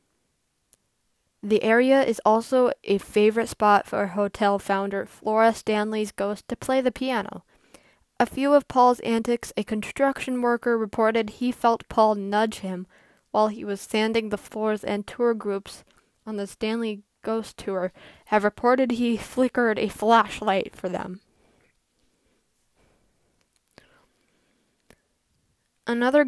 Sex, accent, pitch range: female, American, 205-240 Hz